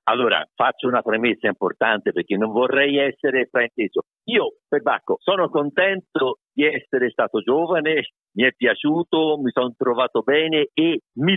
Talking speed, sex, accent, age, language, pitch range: 150 wpm, male, native, 50-69, Italian, 145-235 Hz